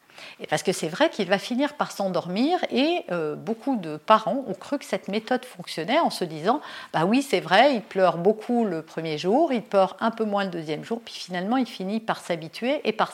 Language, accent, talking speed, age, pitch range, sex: French, French, 230 wpm, 50-69, 195-255 Hz, female